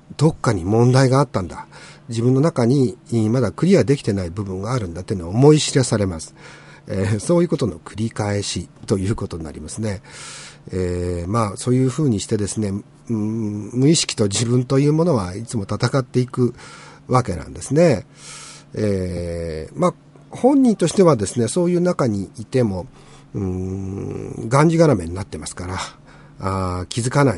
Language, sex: Japanese, male